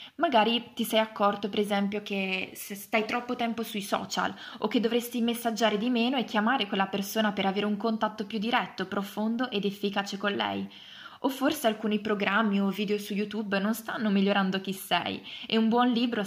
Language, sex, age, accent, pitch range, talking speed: Italian, female, 20-39, native, 200-235 Hz, 190 wpm